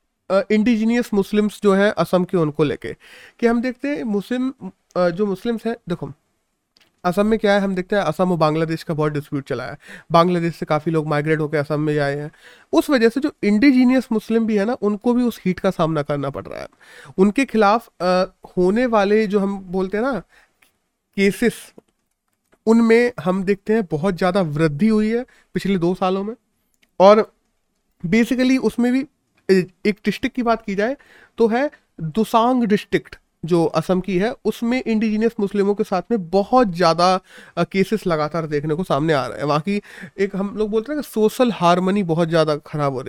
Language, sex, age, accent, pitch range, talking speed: Hindi, male, 30-49, native, 175-225 Hz, 90 wpm